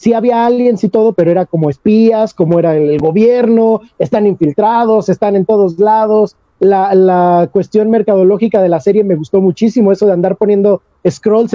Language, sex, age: English, male, 40-59